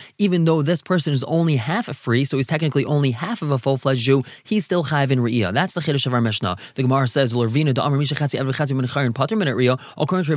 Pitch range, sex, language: 135-170 Hz, male, English